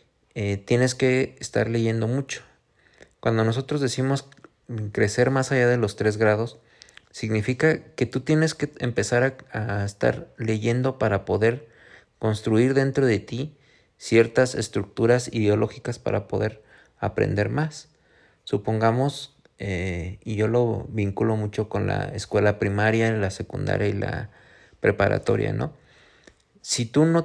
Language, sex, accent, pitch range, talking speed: Spanish, male, Mexican, 105-130 Hz, 130 wpm